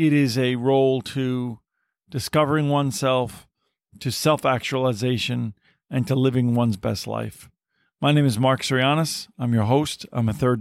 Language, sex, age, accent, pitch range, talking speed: English, male, 40-59, American, 125-145 Hz, 155 wpm